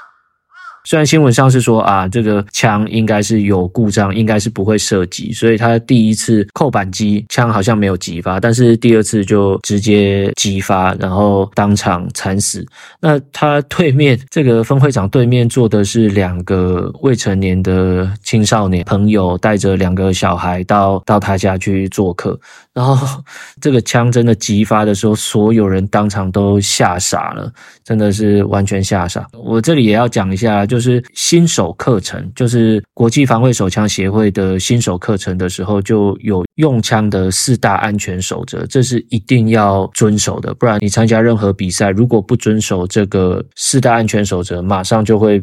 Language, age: Chinese, 20-39